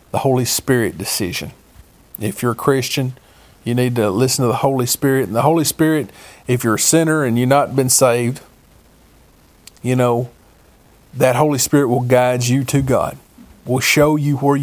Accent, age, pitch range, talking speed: American, 40-59, 120-145 Hz, 175 wpm